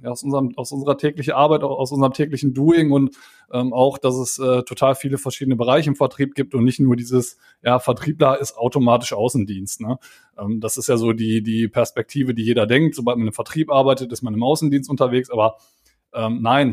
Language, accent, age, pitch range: German, German, 20-39, 115-135 Hz